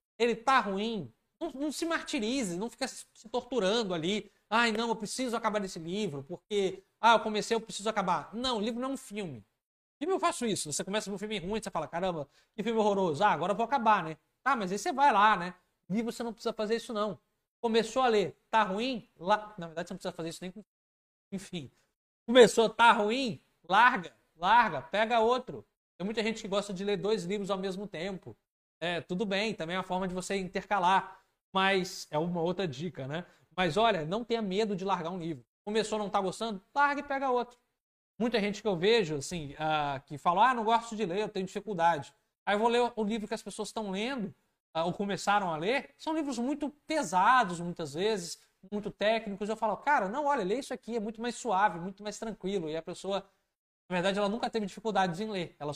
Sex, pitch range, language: male, 185-230 Hz, Portuguese